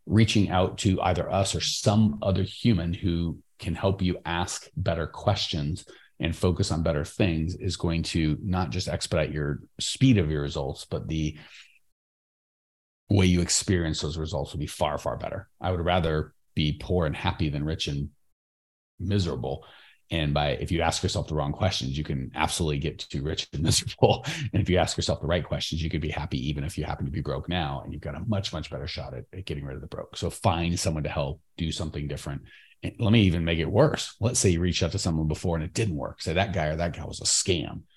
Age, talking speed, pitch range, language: 30-49, 225 wpm, 75-100 Hz, English